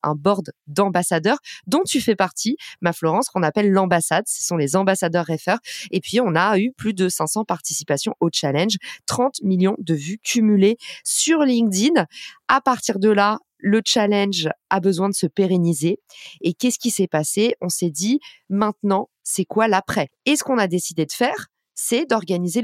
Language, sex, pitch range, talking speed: French, female, 175-235 Hz, 180 wpm